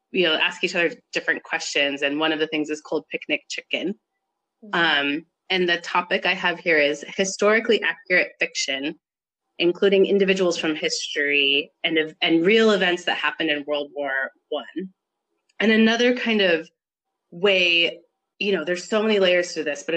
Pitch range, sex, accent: 160-195 Hz, female, American